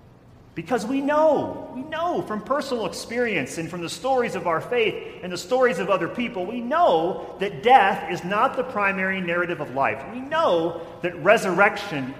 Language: English